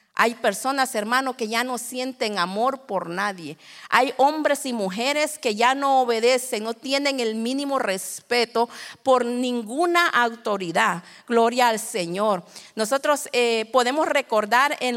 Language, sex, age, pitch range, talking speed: Spanish, female, 40-59, 220-275 Hz, 135 wpm